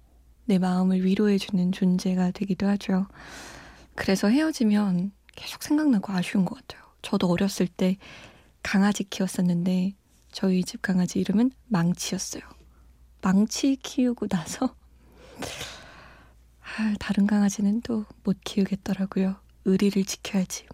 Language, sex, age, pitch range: Korean, female, 20-39, 185-215 Hz